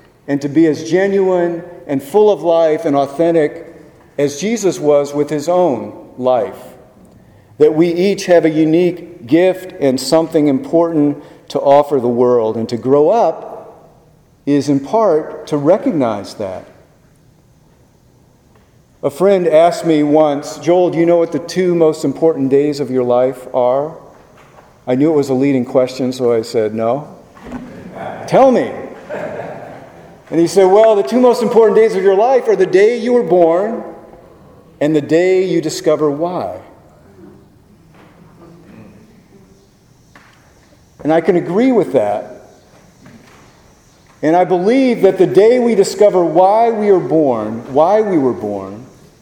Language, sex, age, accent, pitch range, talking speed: English, male, 50-69, American, 140-185 Hz, 145 wpm